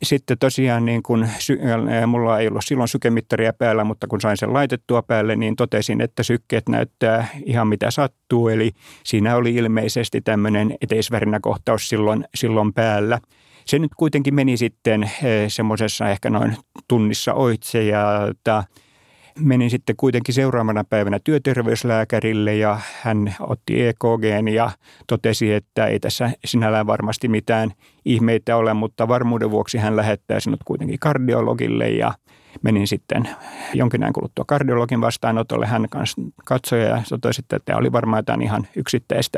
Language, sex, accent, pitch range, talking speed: Finnish, male, native, 110-125 Hz, 135 wpm